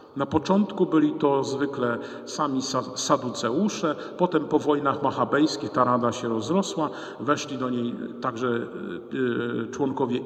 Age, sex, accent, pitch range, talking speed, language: 50-69, male, native, 125-150 Hz, 115 wpm, Polish